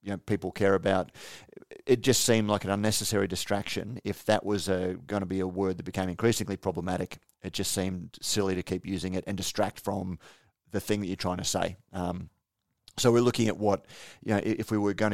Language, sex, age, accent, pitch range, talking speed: English, male, 30-49, Australian, 95-115 Hz, 220 wpm